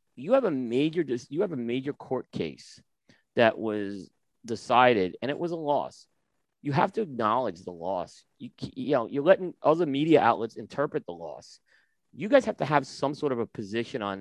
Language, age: English, 40-59